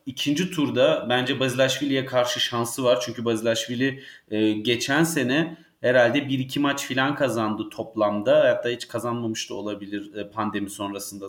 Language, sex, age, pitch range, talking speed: Turkish, male, 30-49, 115-145 Hz, 130 wpm